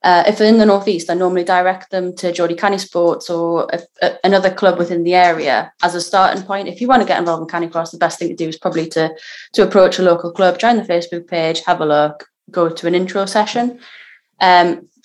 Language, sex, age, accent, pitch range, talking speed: English, female, 20-39, British, 175-200 Hz, 235 wpm